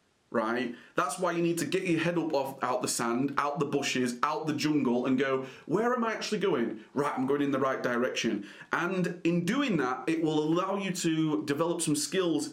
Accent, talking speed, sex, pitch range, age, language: British, 220 wpm, male, 140-195 Hz, 30-49, English